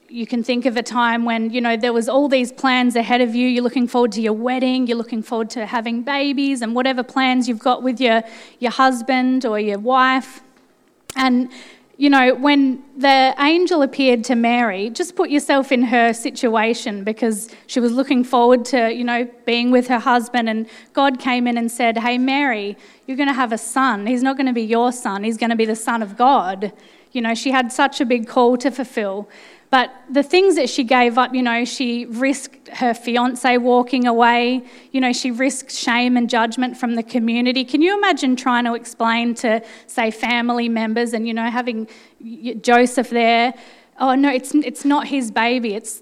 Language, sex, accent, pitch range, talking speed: English, female, Australian, 235-265 Hz, 205 wpm